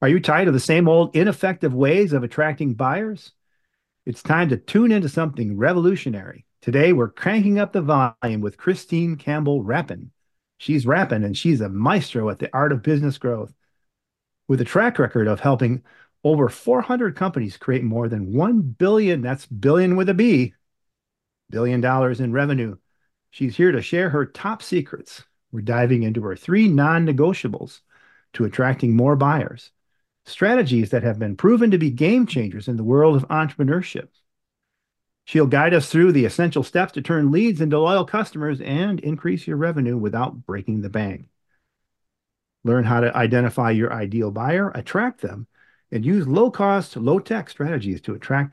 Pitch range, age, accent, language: 120-175 Hz, 40-59, American, English